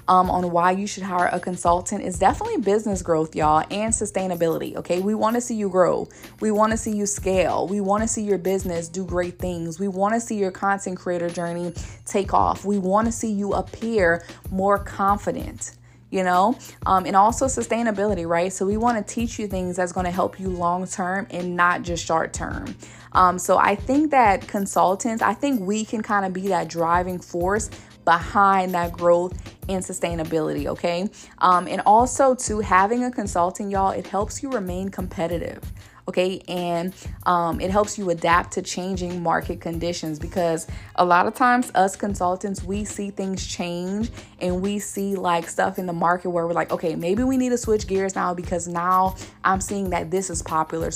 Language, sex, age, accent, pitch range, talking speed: English, female, 20-39, American, 175-200 Hz, 185 wpm